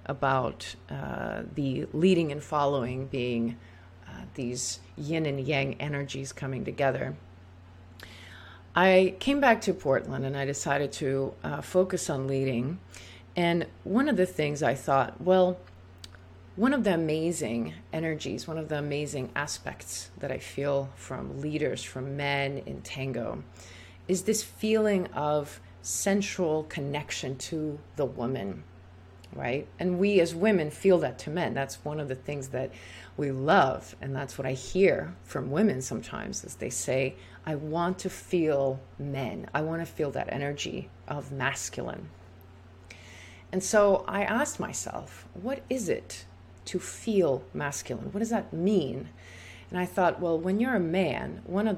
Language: English